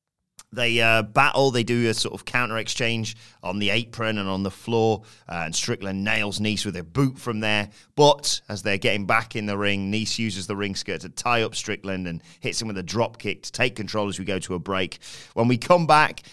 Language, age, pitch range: English, 30-49, 105-140 Hz